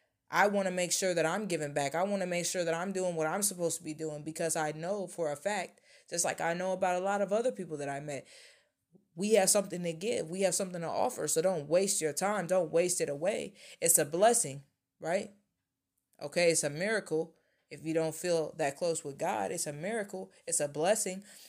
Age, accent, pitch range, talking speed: 20-39, American, 155-190 Hz, 230 wpm